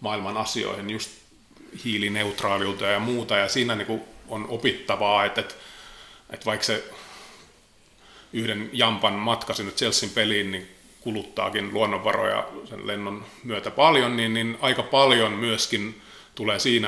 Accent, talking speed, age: native, 110 wpm, 30-49